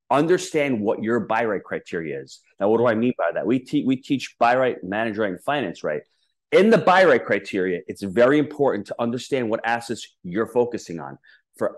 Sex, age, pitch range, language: male, 30-49, 105-135 Hz, English